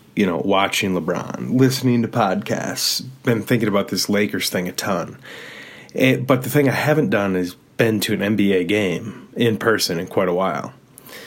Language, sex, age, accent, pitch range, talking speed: English, male, 30-49, American, 100-125 Hz, 180 wpm